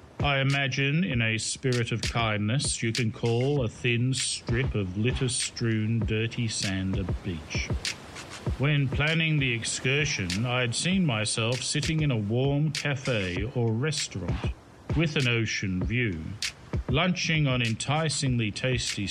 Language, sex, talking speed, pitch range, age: English, male, 130 wpm, 110-135 Hz, 50-69